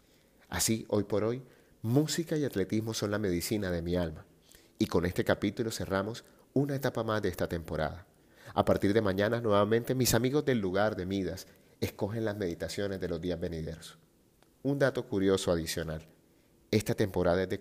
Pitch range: 85-115 Hz